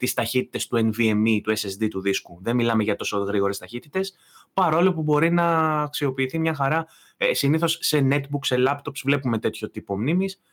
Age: 20-39